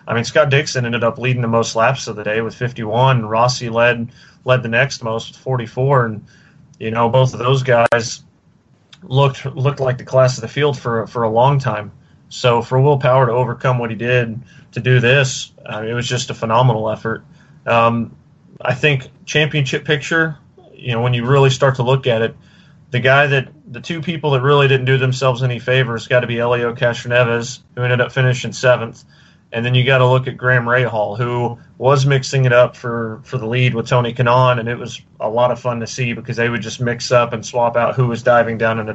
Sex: male